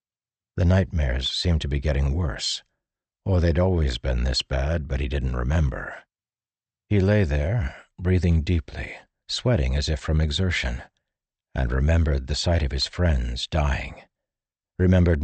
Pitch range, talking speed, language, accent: 70-90 Hz, 140 wpm, English, American